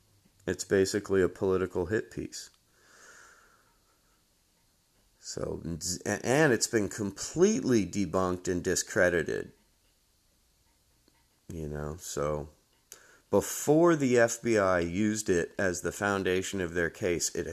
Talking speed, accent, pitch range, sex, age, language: 100 wpm, American, 85-110 Hz, male, 30-49, English